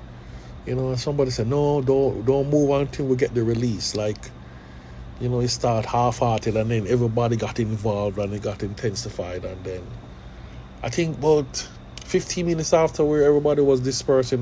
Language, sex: English, male